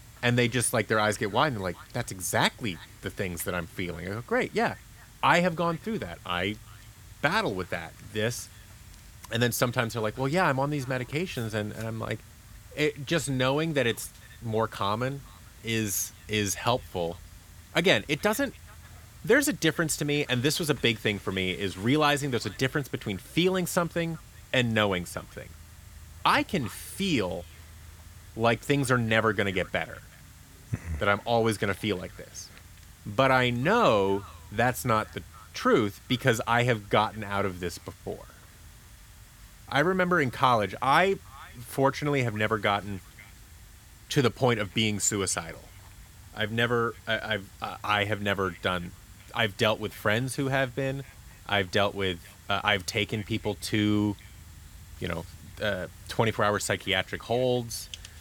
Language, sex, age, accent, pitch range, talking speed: English, male, 30-49, American, 95-125 Hz, 165 wpm